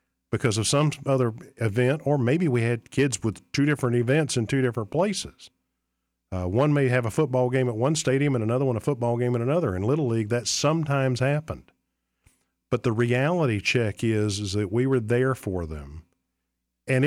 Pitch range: 95-125 Hz